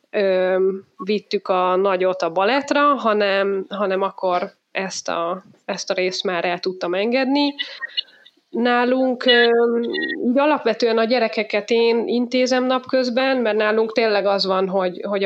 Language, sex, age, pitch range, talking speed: Hungarian, female, 20-39, 190-230 Hz, 120 wpm